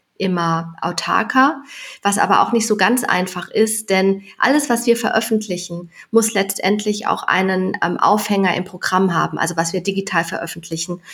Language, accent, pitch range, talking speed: German, German, 180-215 Hz, 150 wpm